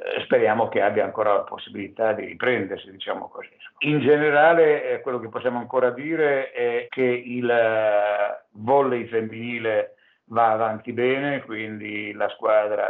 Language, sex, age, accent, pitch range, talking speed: Italian, male, 60-79, native, 105-125 Hz, 130 wpm